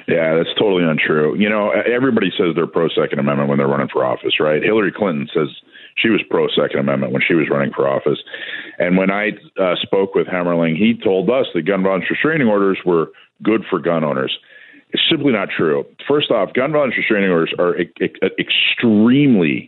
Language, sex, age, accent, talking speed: English, male, 50-69, American, 190 wpm